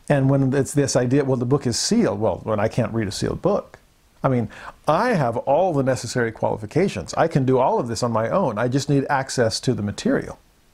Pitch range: 120-150 Hz